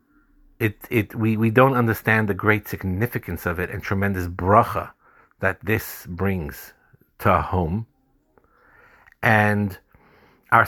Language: English